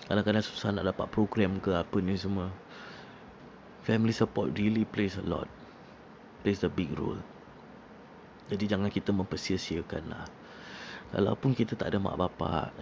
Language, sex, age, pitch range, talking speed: Malay, male, 20-39, 95-110 Hz, 140 wpm